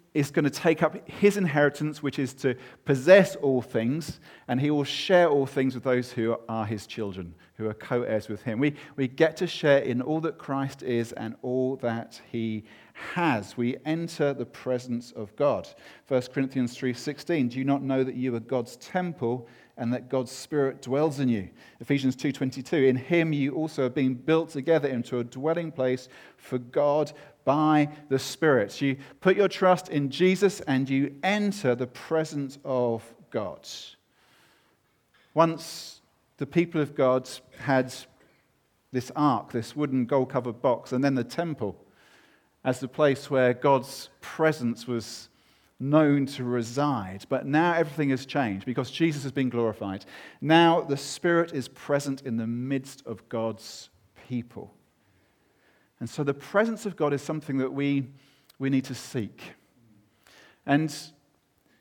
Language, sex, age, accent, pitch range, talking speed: English, male, 40-59, British, 125-150 Hz, 160 wpm